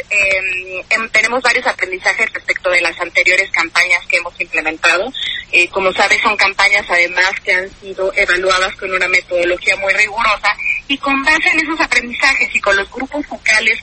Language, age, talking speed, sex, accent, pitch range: Spanish, 30-49, 170 wpm, female, Mexican, 185-250 Hz